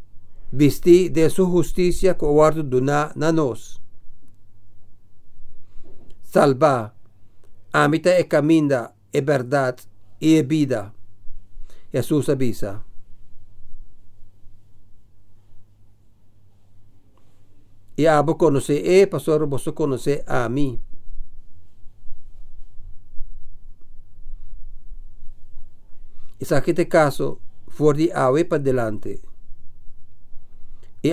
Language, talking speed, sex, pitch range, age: English, 70 wpm, male, 100-150 Hz, 50-69